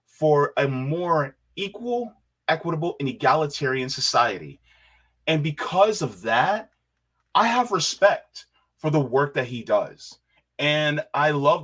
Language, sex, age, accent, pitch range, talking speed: English, male, 20-39, American, 125-155 Hz, 125 wpm